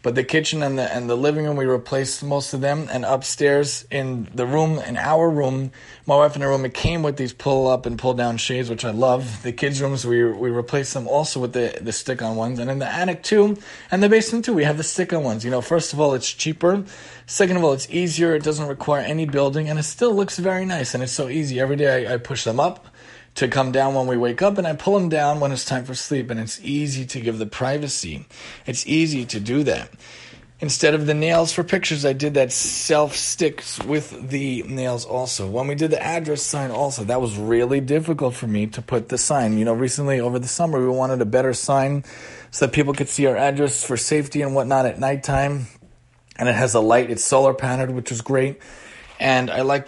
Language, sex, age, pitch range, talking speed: English, male, 30-49, 125-150 Hz, 235 wpm